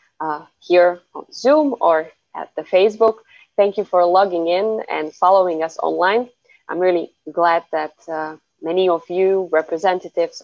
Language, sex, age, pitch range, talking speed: Slovak, female, 20-39, 160-195 Hz, 150 wpm